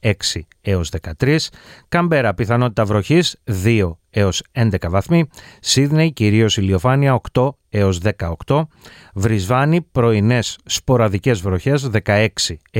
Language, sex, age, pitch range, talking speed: Greek, male, 30-49, 100-140 Hz, 100 wpm